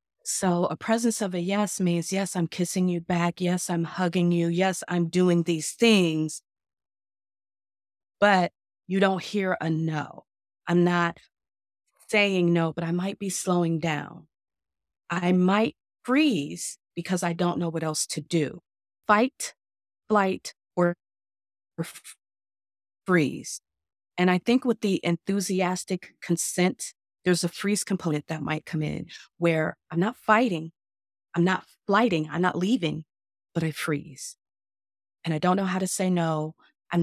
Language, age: English, 30-49